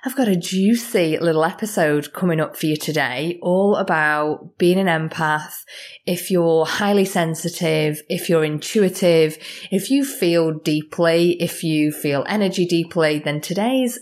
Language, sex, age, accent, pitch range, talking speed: English, female, 30-49, British, 160-220 Hz, 145 wpm